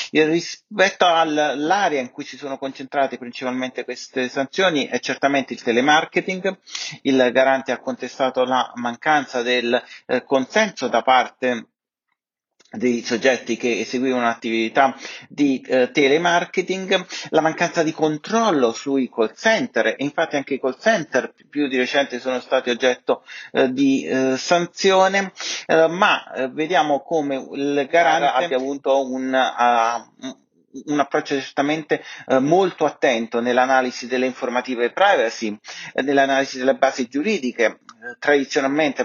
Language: Italian